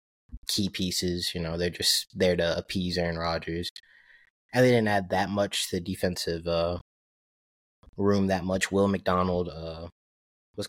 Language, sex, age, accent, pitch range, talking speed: English, male, 20-39, American, 85-95 Hz, 150 wpm